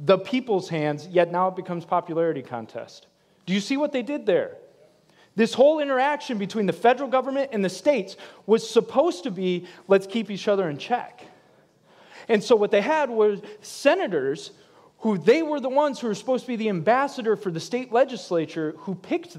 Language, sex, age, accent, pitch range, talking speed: English, male, 30-49, American, 175-240 Hz, 190 wpm